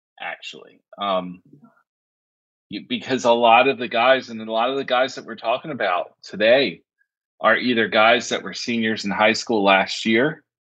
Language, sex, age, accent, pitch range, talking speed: English, male, 30-49, American, 100-140 Hz, 175 wpm